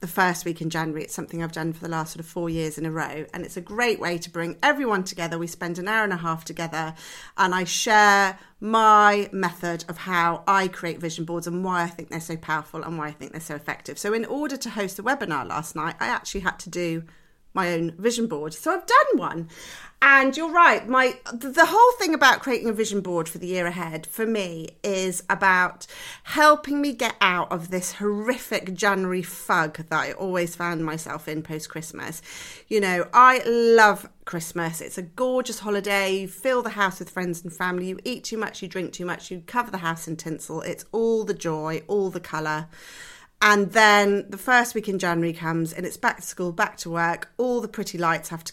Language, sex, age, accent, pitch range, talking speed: English, female, 40-59, British, 165-220 Hz, 230 wpm